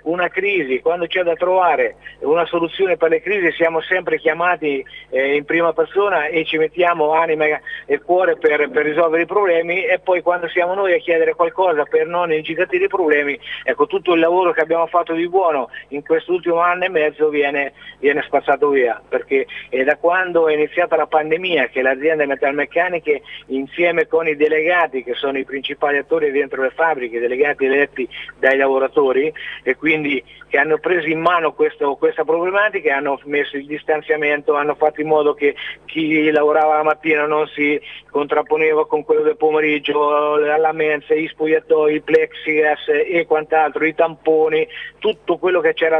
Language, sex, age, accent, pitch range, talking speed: Italian, male, 50-69, native, 150-180 Hz, 170 wpm